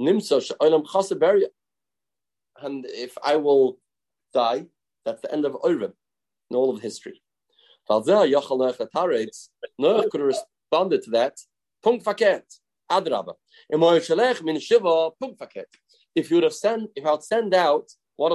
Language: English